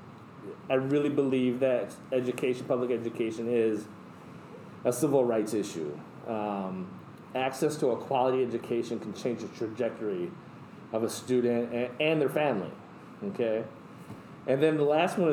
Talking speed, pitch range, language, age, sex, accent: 135 wpm, 120-140 Hz, English, 30-49, male, American